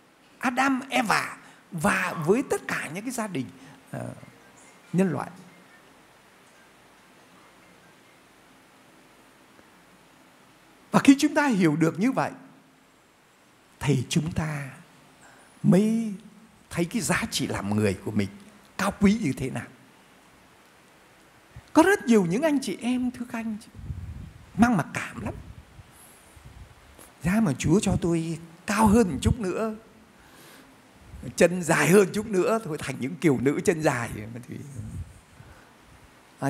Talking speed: 120 wpm